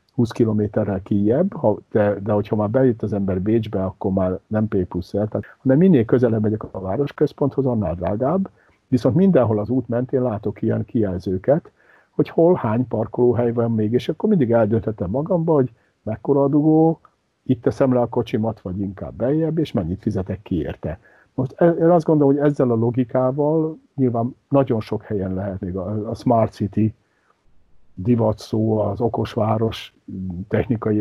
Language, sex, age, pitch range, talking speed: Hungarian, male, 60-79, 95-120 Hz, 165 wpm